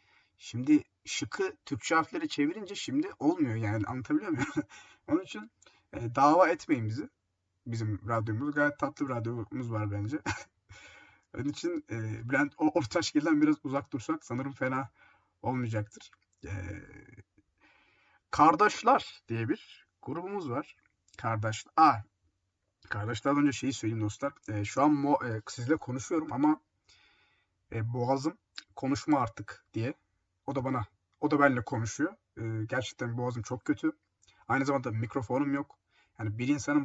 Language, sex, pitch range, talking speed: Turkish, male, 110-155 Hz, 125 wpm